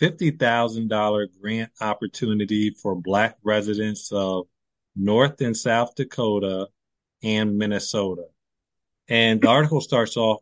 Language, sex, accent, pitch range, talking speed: English, male, American, 105-120 Hz, 105 wpm